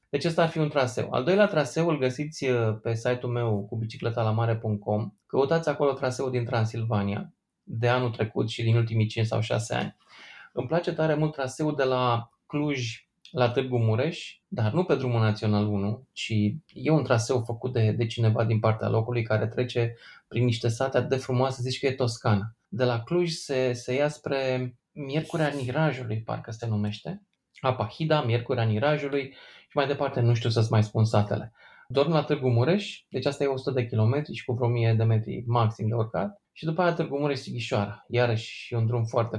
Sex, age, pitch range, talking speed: male, 20-39, 115-140 Hz, 185 wpm